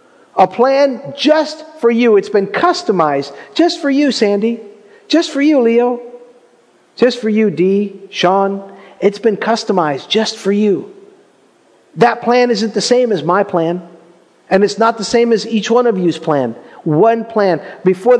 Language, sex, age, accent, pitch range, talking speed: English, male, 50-69, American, 155-220 Hz, 160 wpm